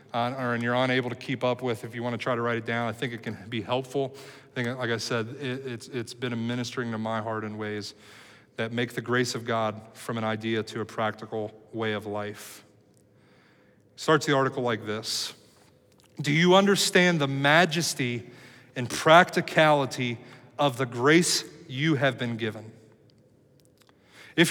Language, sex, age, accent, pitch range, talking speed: English, male, 30-49, American, 120-155 Hz, 180 wpm